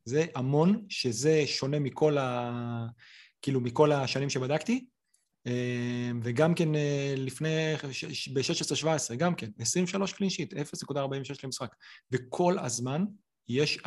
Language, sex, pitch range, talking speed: Hebrew, male, 130-165 Hz, 100 wpm